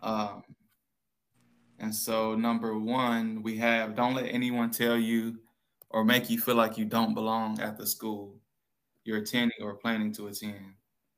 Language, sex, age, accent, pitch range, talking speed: English, male, 20-39, American, 105-115 Hz, 155 wpm